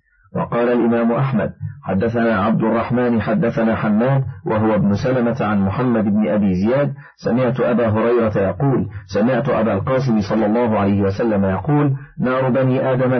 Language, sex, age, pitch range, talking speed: Arabic, male, 50-69, 110-130 Hz, 140 wpm